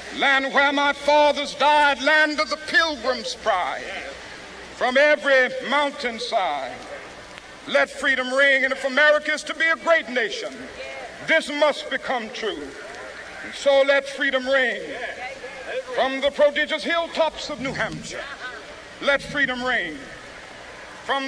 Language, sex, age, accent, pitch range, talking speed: English, male, 60-79, American, 285-325 Hz, 125 wpm